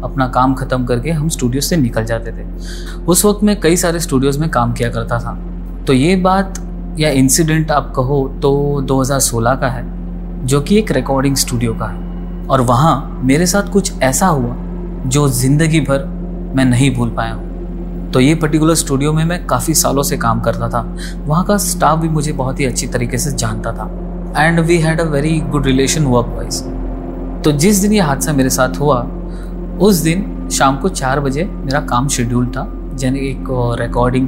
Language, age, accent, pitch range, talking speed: Hindi, 30-49, native, 120-155 Hz, 190 wpm